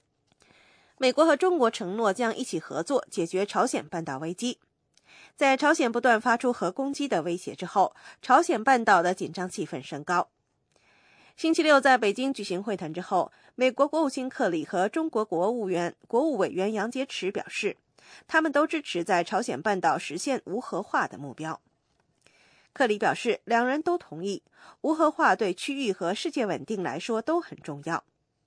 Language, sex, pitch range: English, female, 180-270 Hz